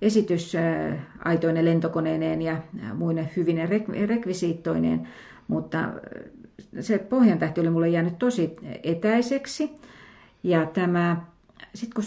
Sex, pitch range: female, 165-225 Hz